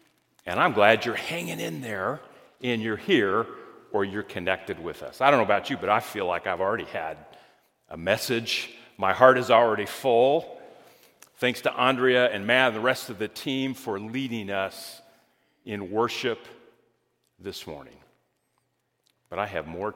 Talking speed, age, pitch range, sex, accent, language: 170 wpm, 40-59, 105-135 Hz, male, American, English